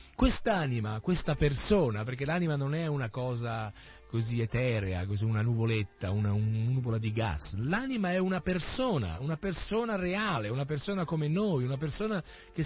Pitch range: 110-170 Hz